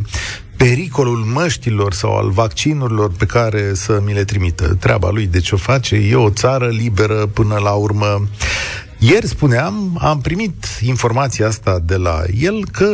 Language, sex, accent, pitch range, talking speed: Romanian, male, native, 105-140 Hz, 160 wpm